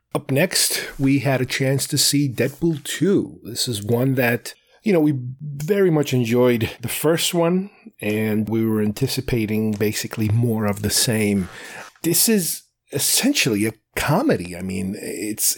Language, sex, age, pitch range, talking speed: English, male, 30-49, 110-145 Hz, 155 wpm